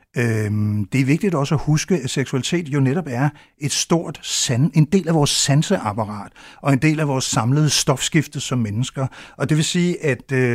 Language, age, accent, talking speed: Danish, 60-79, native, 180 wpm